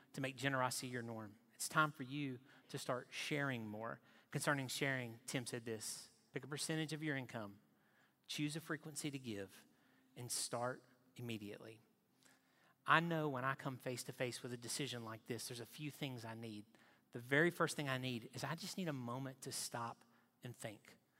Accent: American